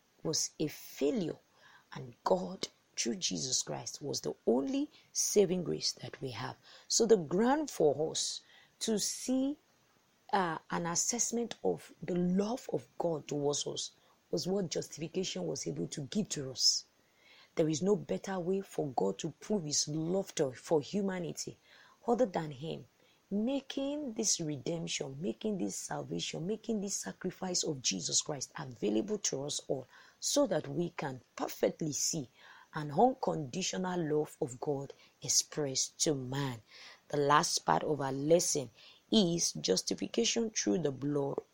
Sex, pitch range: female, 150-220 Hz